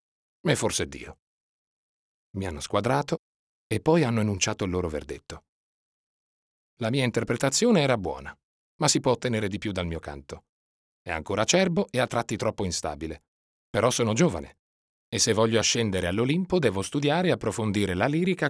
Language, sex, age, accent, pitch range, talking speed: Italian, male, 40-59, native, 95-145 Hz, 160 wpm